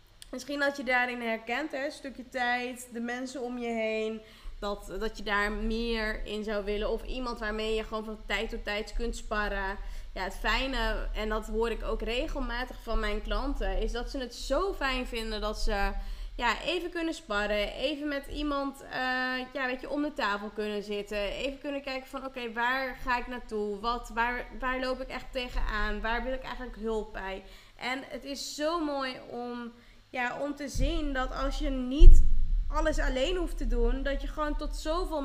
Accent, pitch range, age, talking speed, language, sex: Dutch, 220-275 Hz, 20-39, 195 wpm, Dutch, female